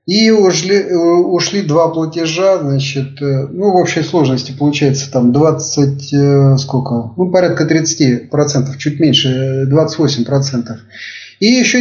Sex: male